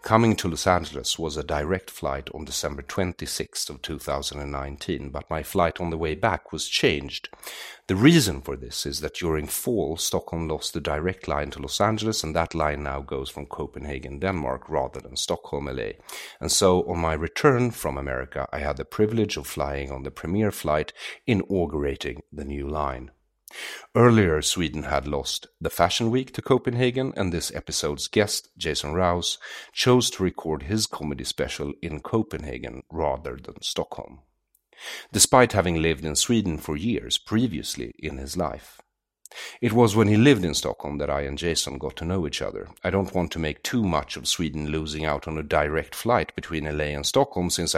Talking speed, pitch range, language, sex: 180 wpm, 75-100 Hz, English, male